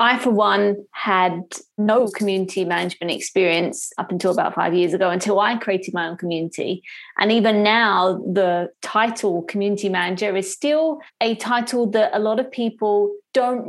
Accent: British